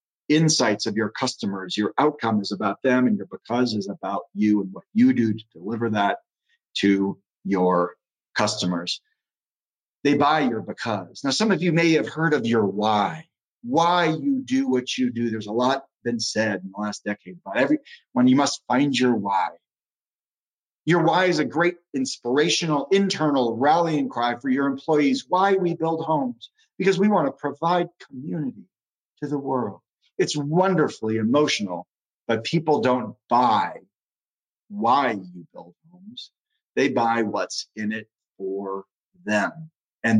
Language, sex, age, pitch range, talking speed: English, male, 40-59, 105-160 Hz, 155 wpm